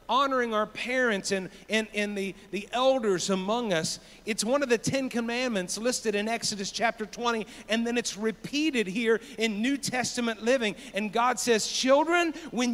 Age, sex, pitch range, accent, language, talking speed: 50-69, male, 185-245 Hz, American, English, 170 wpm